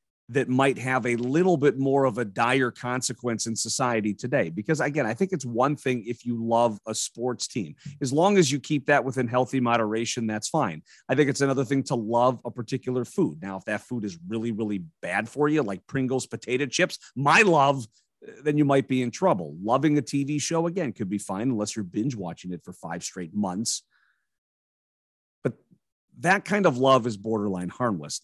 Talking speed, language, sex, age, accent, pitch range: 200 wpm, English, male, 40-59, American, 110-140 Hz